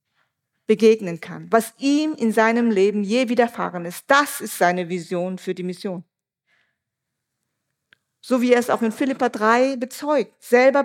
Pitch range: 185-265 Hz